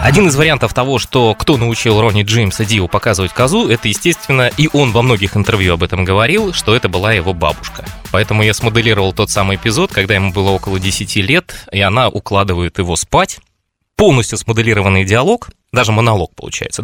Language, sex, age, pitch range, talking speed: Russian, male, 20-39, 95-125 Hz, 180 wpm